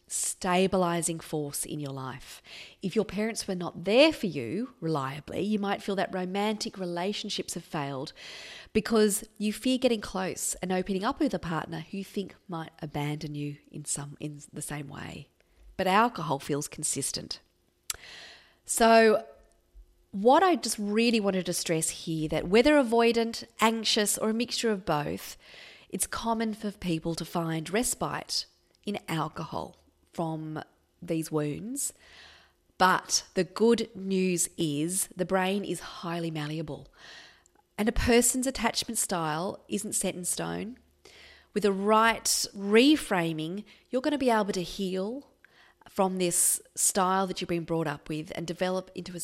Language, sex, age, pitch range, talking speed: English, female, 30-49, 165-220 Hz, 150 wpm